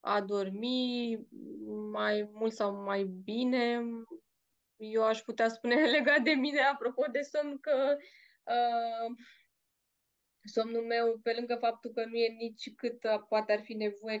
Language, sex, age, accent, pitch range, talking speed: Romanian, female, 20-39, native, 215-250 Hz, 140 wpm